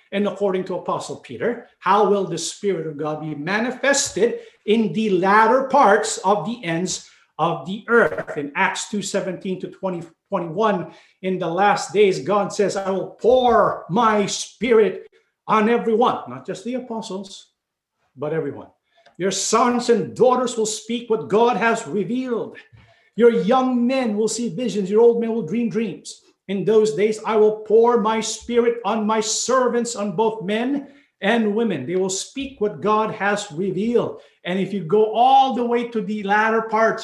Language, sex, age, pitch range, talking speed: English, male, 50-69, 185-235 Hz, 170 wpm